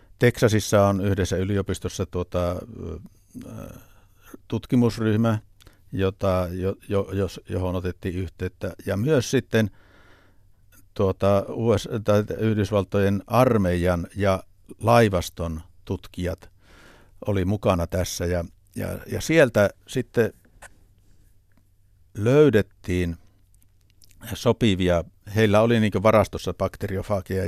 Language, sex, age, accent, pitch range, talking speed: Finnish, male, 60-79, native, 90-100 Hz, 65 wpm